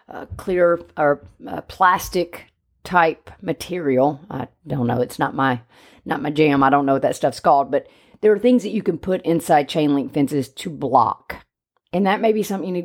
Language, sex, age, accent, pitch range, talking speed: English, female, 40-59, American, 150-195 Hz, 200 wpm